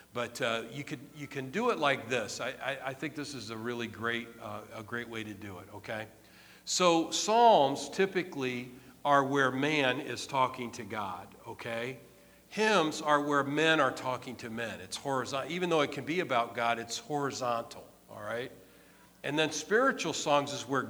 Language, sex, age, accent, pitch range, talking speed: English, male, 50-69, American, 120-150 Hz, 185 wpm